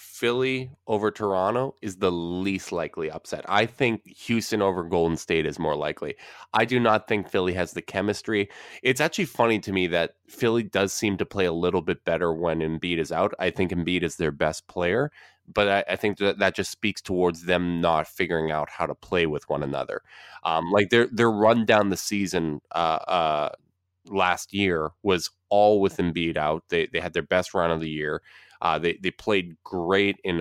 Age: 20-39